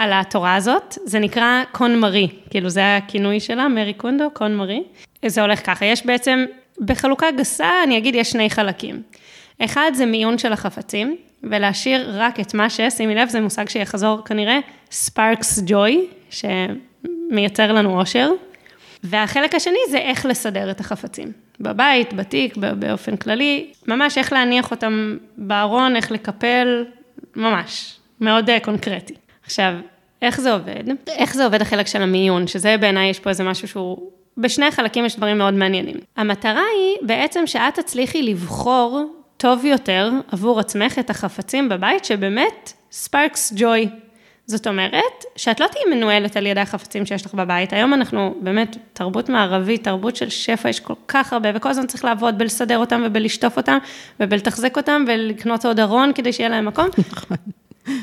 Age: 20-39